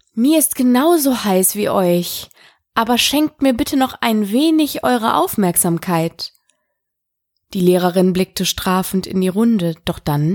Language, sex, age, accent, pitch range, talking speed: German, female, 20-39, German, 170-240 Hz, 140 wpm